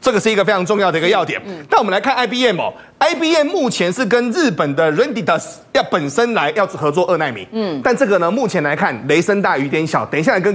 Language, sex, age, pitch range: Chinese, male, 30-49, 170-240 Hz